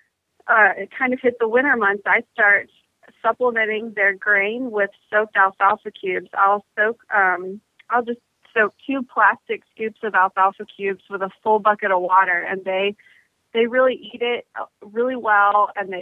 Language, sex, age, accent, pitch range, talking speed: English, female, 30-49, American, 200-235 Hz, 165 wpm